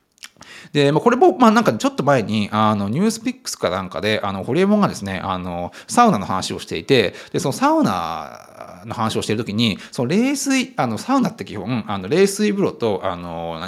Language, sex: Japanese, male